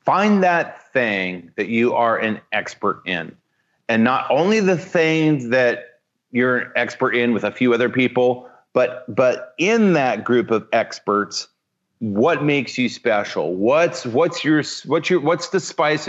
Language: English